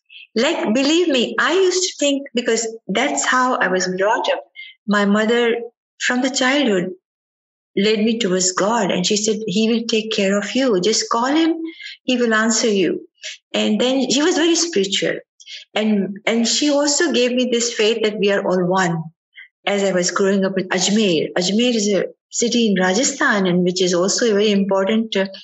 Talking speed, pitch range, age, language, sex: 185 wpm, 190-255 Hz, 50-69, English, female